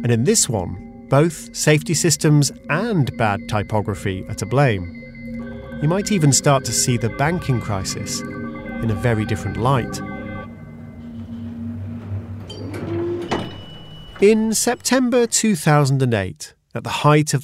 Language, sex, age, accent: English, male, 40-59, British